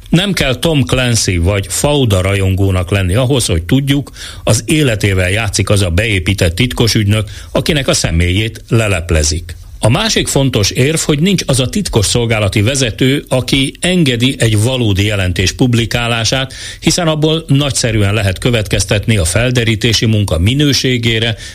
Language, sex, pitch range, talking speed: Hungarian, male, 95-135 Hz, 135 wpm